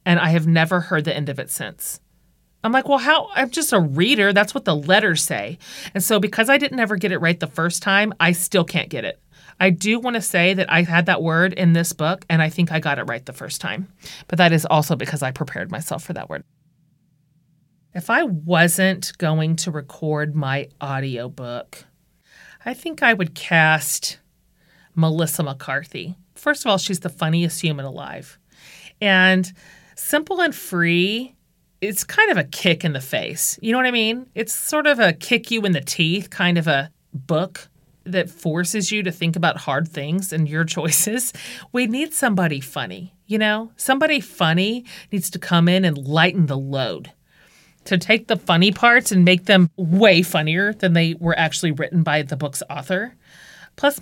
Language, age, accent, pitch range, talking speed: English, 40-59, American, 155-195 Hz, 195 wpm